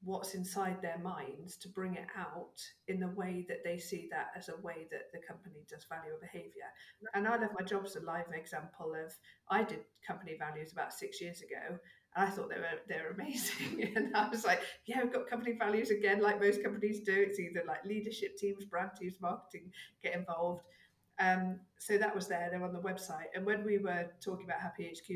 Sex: female